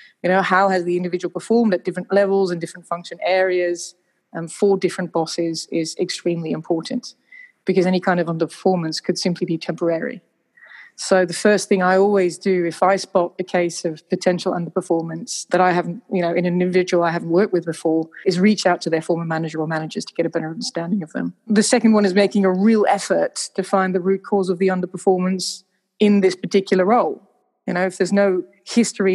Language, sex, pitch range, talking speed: English, female, 175-200 Hz, 210 wpm